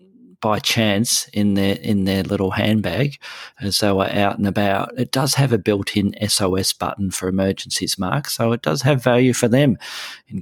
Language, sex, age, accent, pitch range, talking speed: English, male, 40-59, Australian, 100-120 Hz, 185 wpm